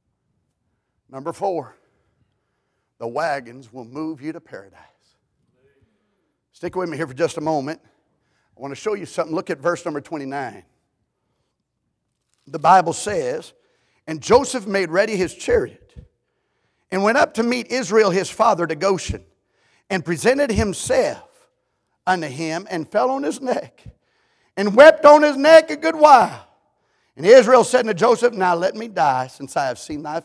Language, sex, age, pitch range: English, male, 50-69, 170-245 Hz